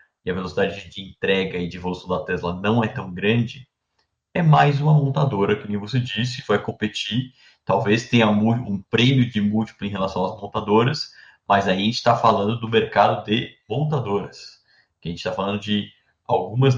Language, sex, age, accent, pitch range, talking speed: Portuguese, male, 20-39, Brazilian, 95-120 Hz, 180 wpm